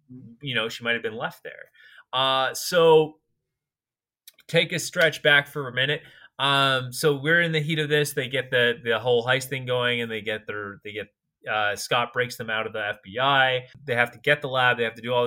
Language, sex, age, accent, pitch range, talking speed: English, male, 20-39, American, 115-140 Hz, 225 wpm